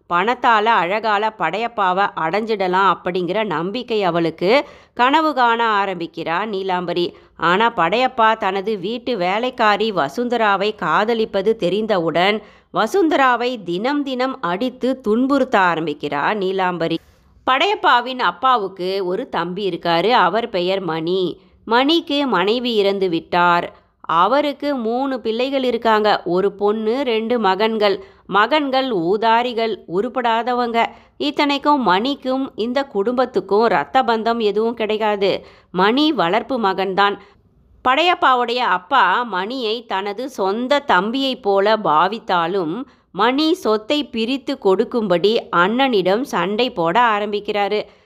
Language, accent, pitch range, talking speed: Tamil, native, 190-245 Hz, 95 wpm